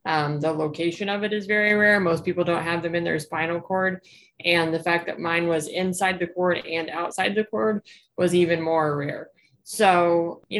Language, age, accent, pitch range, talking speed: English, 20-39, American, 160-195 Hz, 205 wpm